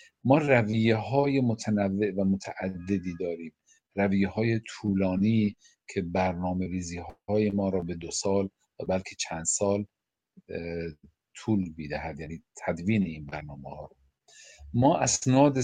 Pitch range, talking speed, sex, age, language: 90-115 Hz, 120 wpm, male, 50-69, Persian